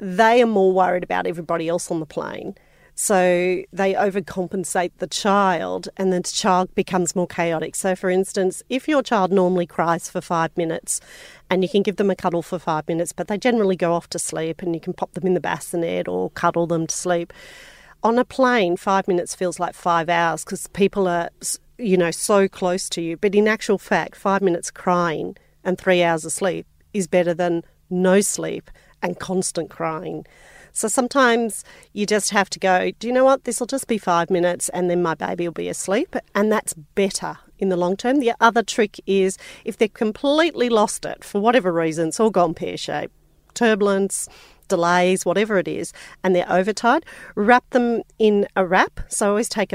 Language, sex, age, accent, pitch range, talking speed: English, female, 40-59, Australian, 175-215 Hz, 200 wpm